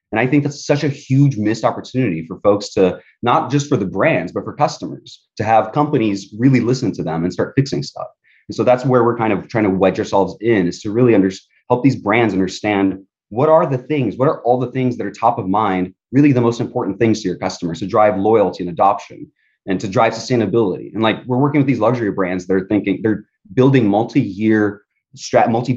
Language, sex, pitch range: English, male, 100-125 Hz